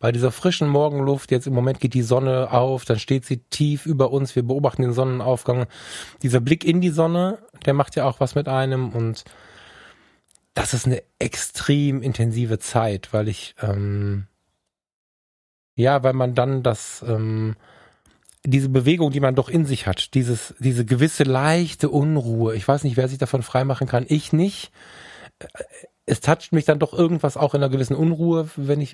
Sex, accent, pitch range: male, German, 115-145 Hz